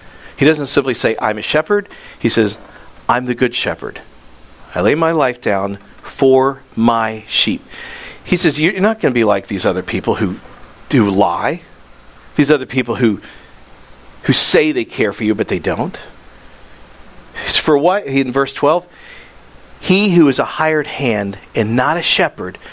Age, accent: 50-69, American